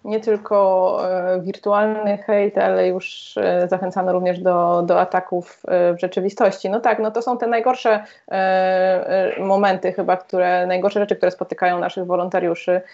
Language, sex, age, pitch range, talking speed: Polish, female, 20-39, 185-215 Hz, 155 wpm